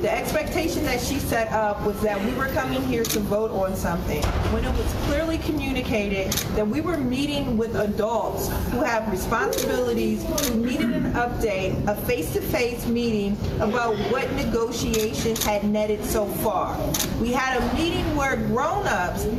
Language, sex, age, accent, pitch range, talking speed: English, female, 40-59, American, 220-300 Hz, 155 wpm